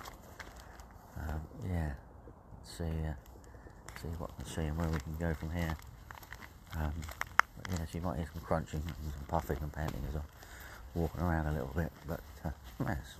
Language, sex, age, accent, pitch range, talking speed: English, male, 40-59, British, 80-90 Hz, 180 wpm